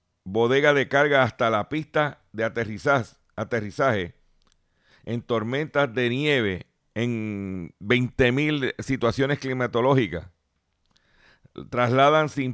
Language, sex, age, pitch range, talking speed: Spanish, male, 50-69, 100-135 Hz, 85 wpm